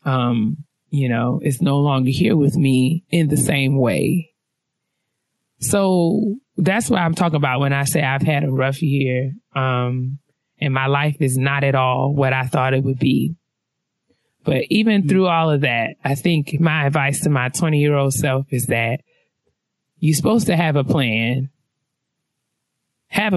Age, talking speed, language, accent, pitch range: 20-39, 170 wpm, English, American, 135-170 Hz